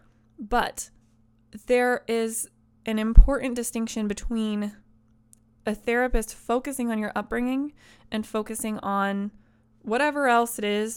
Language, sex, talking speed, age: English, female, 110 wpm, 20-39